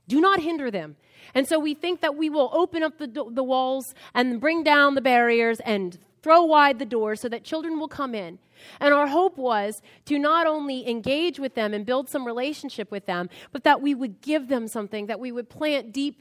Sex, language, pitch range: female, English, 240-300 Hz